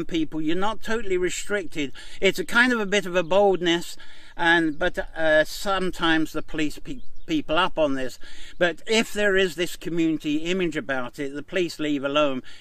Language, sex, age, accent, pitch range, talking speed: English, male, 60-79, British, 145-180 Hz, 175 wpm